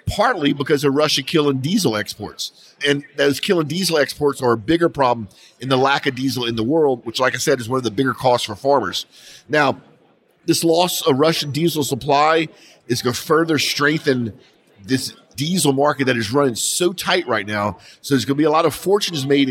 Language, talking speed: English, 210 wpm